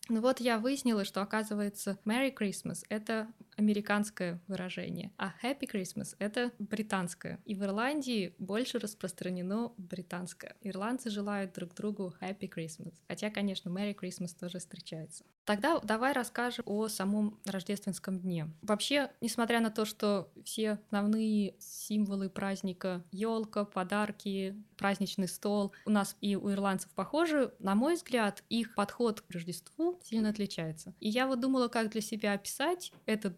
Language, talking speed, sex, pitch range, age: Russian, 140 wpm, female, 190-230 Hz, 20-39